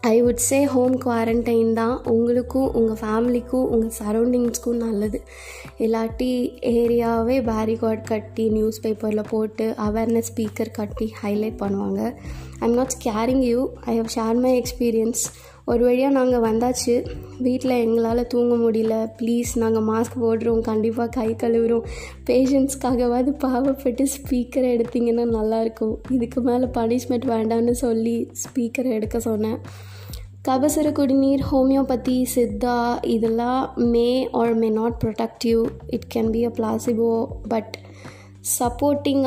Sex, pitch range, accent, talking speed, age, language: female, 225-255 Hz, native, 120 wpm, 20-39, Tamil